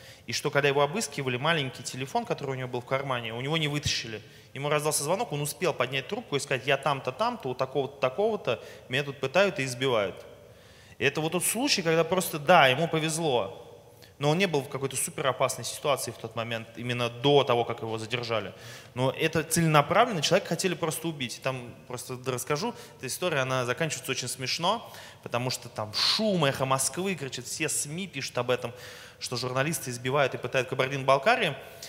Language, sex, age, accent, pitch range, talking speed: Russian, male, 20-39, native, 125-165 Hz, 185 wpm